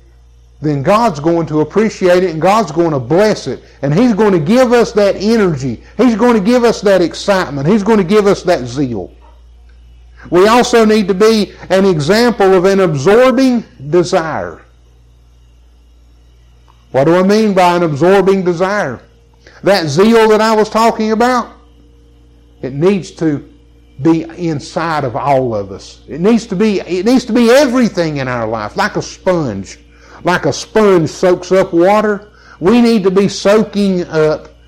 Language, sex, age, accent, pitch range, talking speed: English, male, 50-69, American, 140-210 Hz, 165 wpm